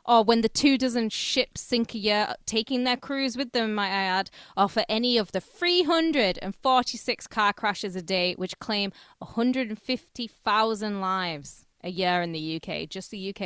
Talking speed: 175 wpm